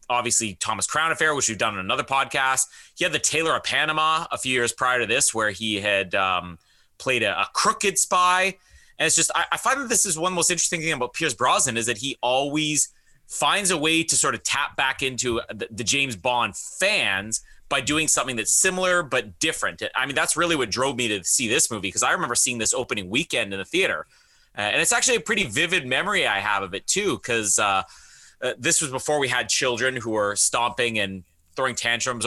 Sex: male